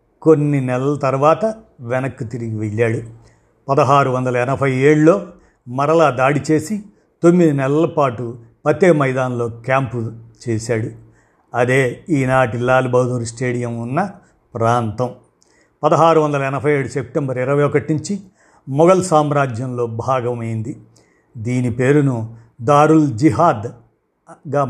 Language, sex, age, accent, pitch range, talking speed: Telugu, male, 50-69, native, 125-155 Hz, 90 wpm